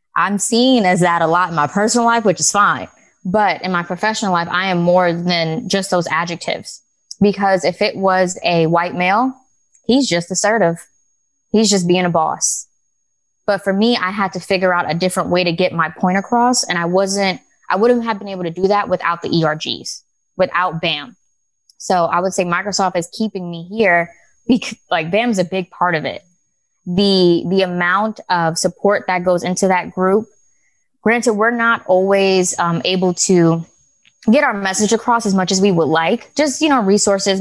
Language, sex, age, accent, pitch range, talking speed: English, female, 20-39, American, 175-205 Hz, 195 wpm